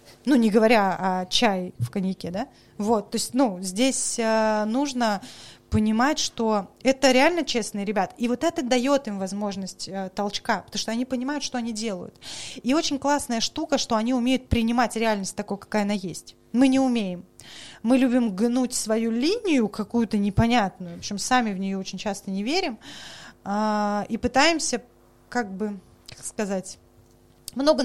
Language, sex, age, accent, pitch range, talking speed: Russian, female, 20-39, native, 200-260 Hz, 160 wpm